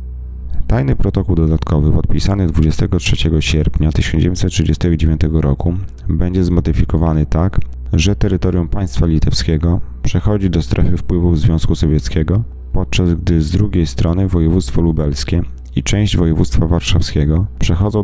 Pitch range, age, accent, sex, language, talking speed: 80-95 Hz, 30-49, native, male, Polish, 110 wpm